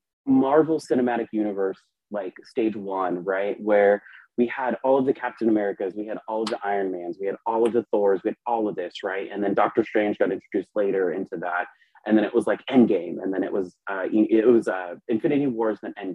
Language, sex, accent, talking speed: English, male, American, 230 wpm